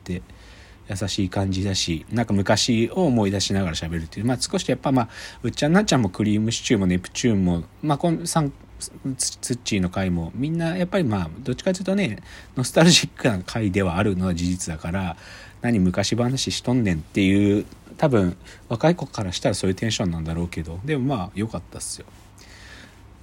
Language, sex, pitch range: Japanese, male, 90-130 Hz